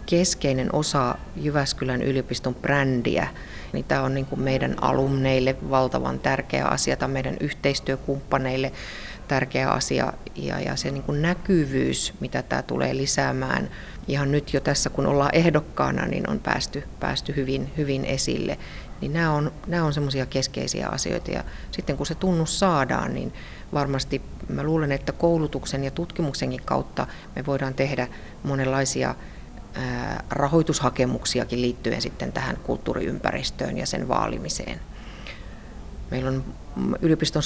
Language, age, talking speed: Finnish, 30-49, 120 wpm